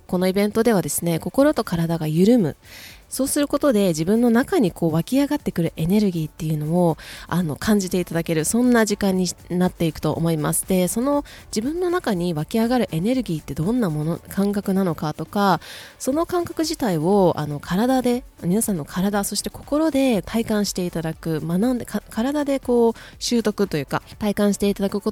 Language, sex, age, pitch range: Japanese, female, 20-39, 155-220 Hz